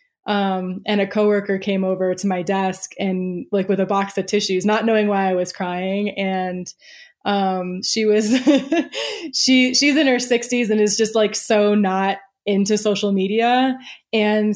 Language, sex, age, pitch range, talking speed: English, female, 20-39, 205-290 Hz, 170 wpm